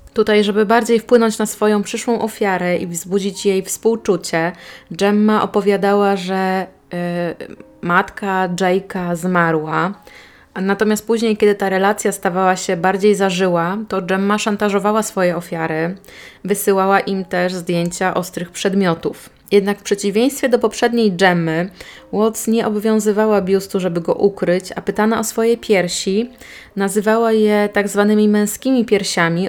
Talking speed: 125 wpm